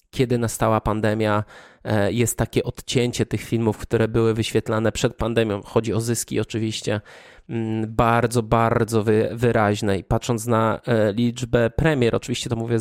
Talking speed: 130 wpm